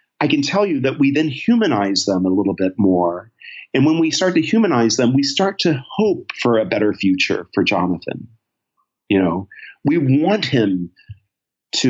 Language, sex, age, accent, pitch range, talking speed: English, male, 40-59, American, 100-145 Hz, 180 wpm